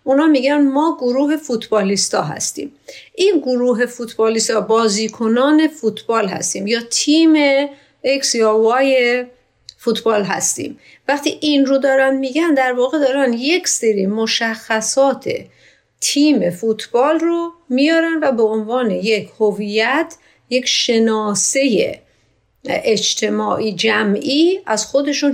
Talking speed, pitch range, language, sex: 105 wpm, 220-280 Hz, Persian, female